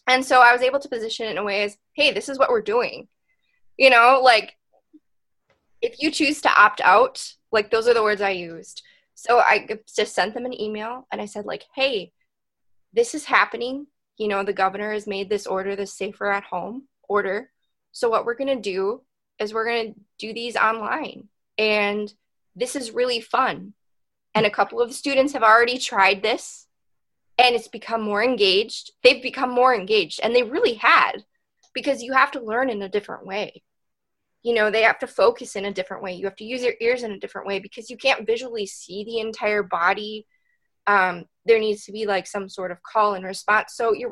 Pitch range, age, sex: 205-255 Hz, 20-39, female